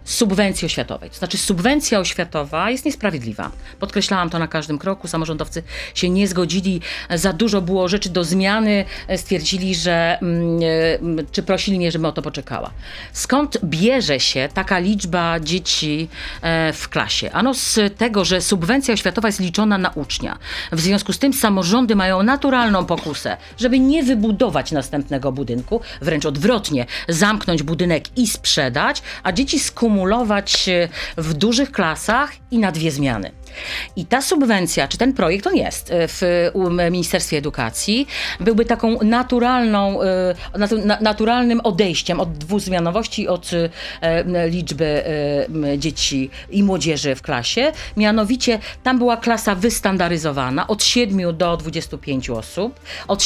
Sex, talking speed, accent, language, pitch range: female, 130 wpm, native, Polish, 165-220 Hz